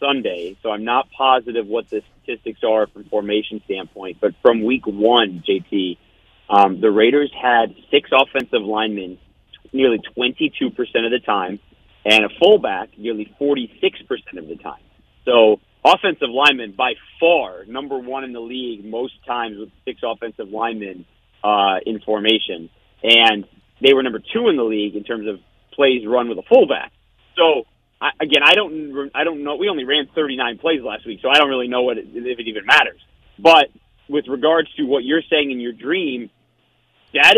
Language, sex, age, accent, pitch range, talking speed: English, male, 40-59, American, 110-165 Hz, 175 wpm